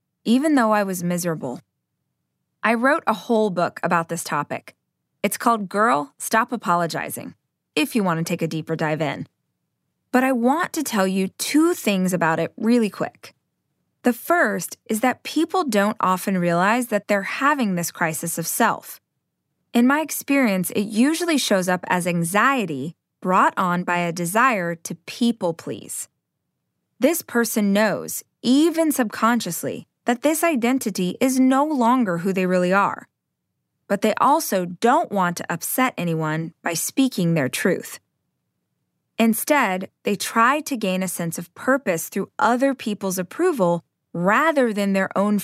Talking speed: 150 wpm